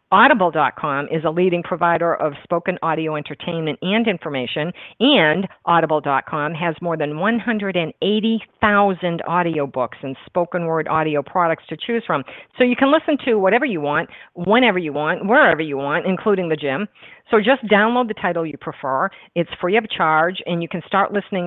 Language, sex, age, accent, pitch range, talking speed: English, female, 50-69, American, 150-195 Hz, 170 wpm